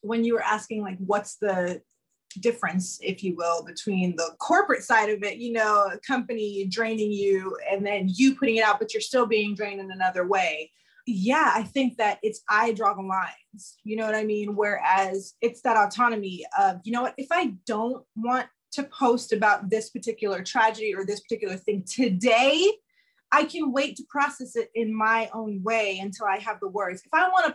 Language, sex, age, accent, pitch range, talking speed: English, female, 20-39, American, 210-275 Hz, 200 wpm